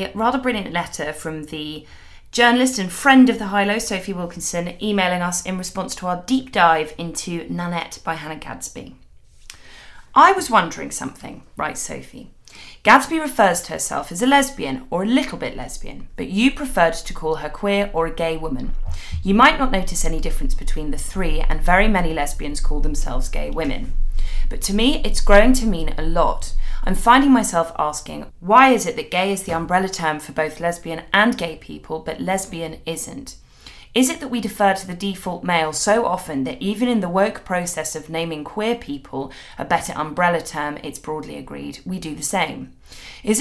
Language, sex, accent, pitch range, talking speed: English, female, British, 155-210 Hz, 190 wpm